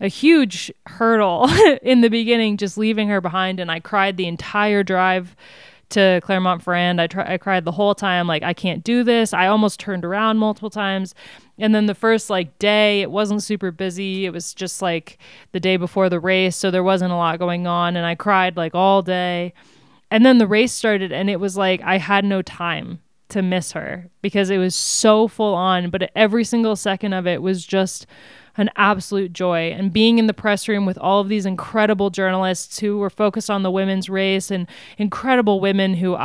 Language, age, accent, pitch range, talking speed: English, 20-39, American, 185-215 Hz, 200 wpm